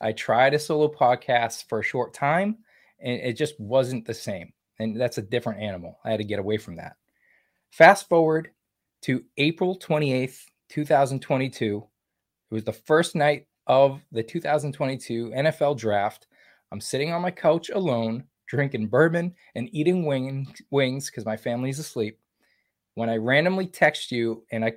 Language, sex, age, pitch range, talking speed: English, male, 20-39, 115-150 Hz, 155 wpm